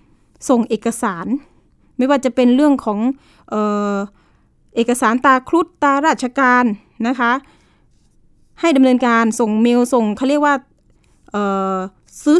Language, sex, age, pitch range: Thai, female, 20-39, 210-270 Hz